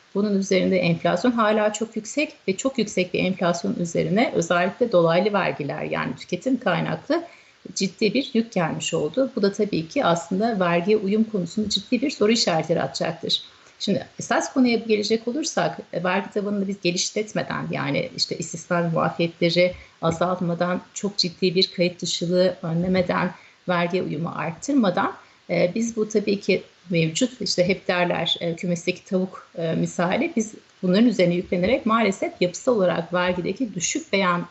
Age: 40-59